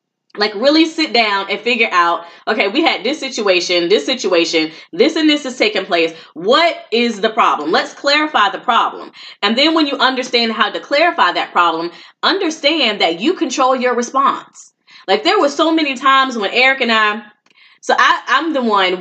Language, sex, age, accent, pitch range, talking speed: English, female, 20-39, American, 220-330 Hz, 190 wpm